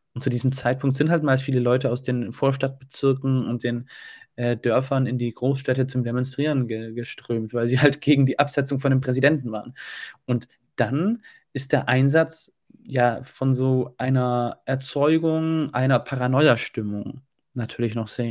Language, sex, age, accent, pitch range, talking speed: German, male, 20-39, German, 125-150 Hz, 155 wpm